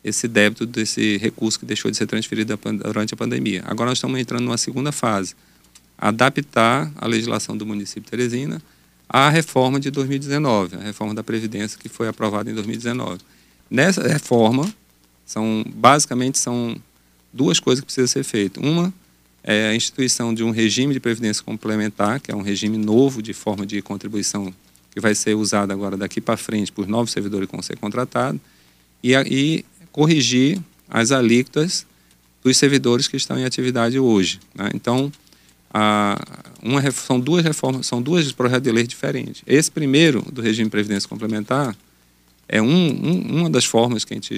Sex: male